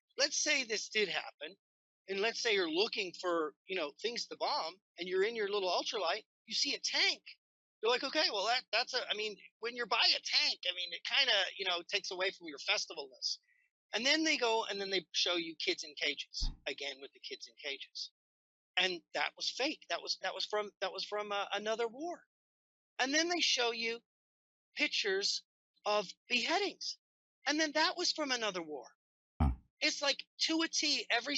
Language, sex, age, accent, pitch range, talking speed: English, male, 40-59, American, 205-305 Hz, 205 wpm